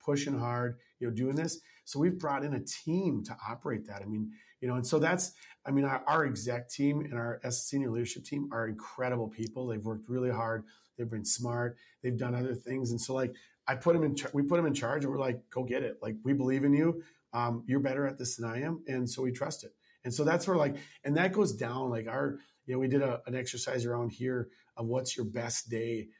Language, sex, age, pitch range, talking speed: English, male, 40-59, 115-140 Hz, 245 wpm